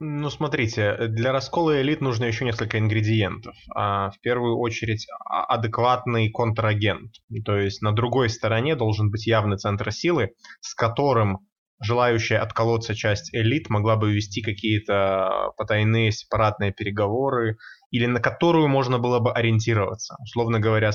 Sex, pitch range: male, 105-120 Hz